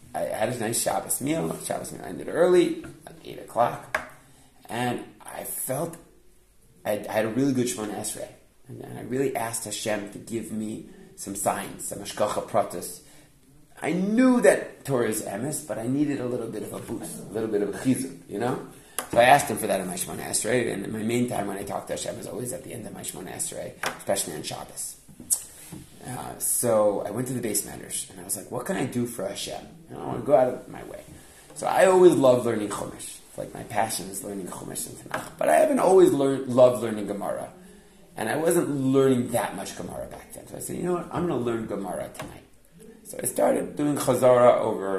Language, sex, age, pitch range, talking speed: English, male, 30-49, 110-150 Hz, 225 wpm